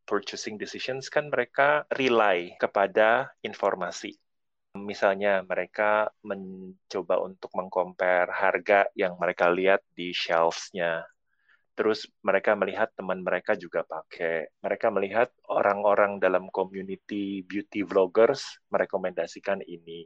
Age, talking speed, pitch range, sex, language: 20-39, 100 wpm, 90-105 Hz, male, Indonesian